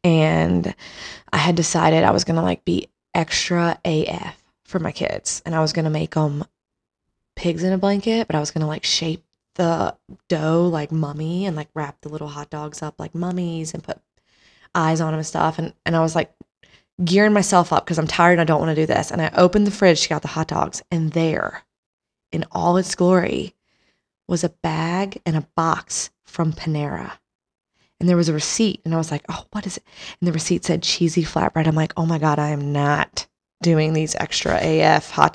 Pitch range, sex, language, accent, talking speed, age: 155-180 Hz, female, English, American, 215 wpm, 20-39